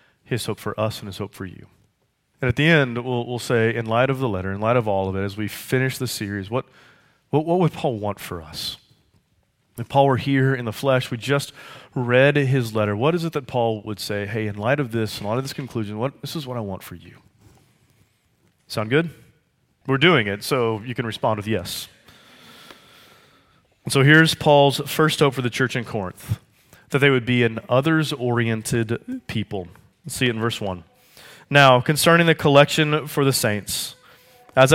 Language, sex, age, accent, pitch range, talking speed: English, male, 30-49, American, 110-145 Hz, 205 wpm